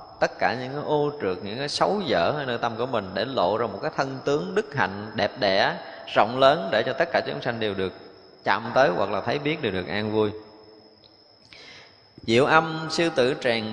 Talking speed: 220 wpm